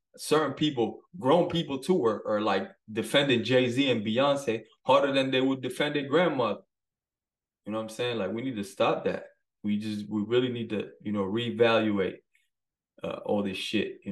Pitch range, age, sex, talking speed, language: 105-135 Hz, 20-39, male, 185 wpm, English